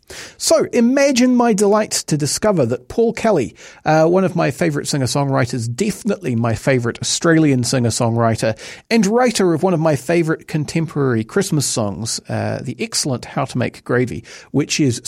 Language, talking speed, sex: English, 155 wpm, male